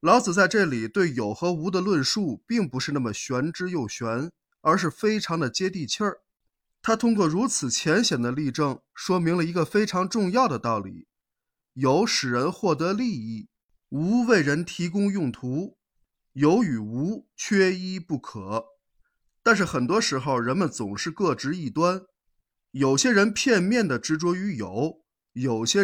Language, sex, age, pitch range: Chinese, male, 20-39, 140-205 Hz